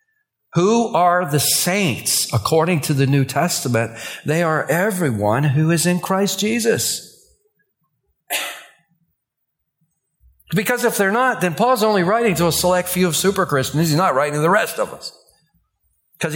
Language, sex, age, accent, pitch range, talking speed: English, male, 50-69, American, 140-195 Hz, 145 wpm